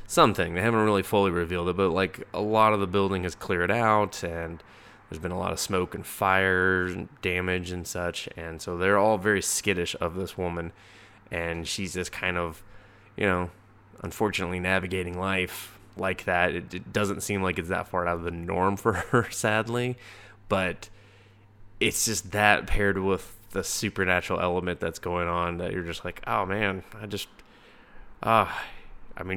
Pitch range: 90-110 Hz